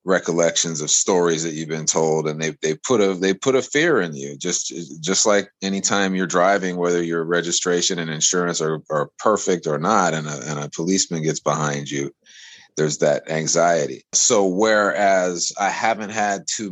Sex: male